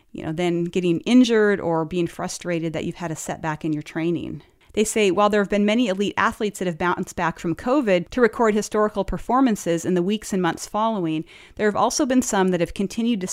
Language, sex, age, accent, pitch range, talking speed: English, female, 40-59, American, 165-205 Hz, 225 wpm